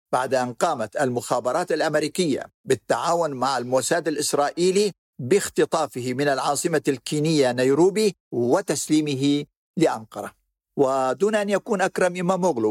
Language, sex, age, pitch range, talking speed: Arabic, male, 50-69, 135-175 Hz, 105 wpm